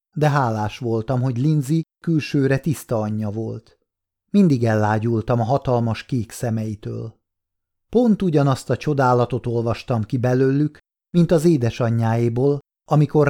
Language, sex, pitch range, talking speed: Hungarian, male, 110-150 Hz, 115 wpm